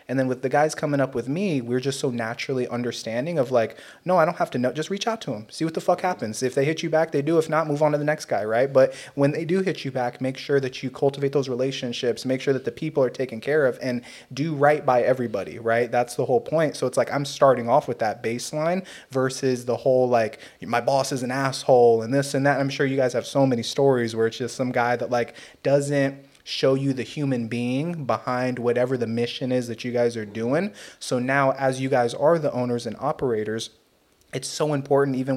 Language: English